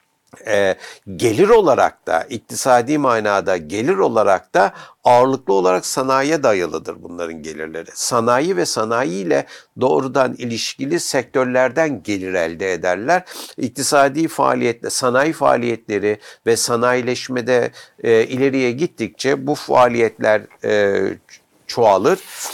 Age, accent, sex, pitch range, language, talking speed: 60-79, native, male, 110-135 Hz, Turkish, 95 wpm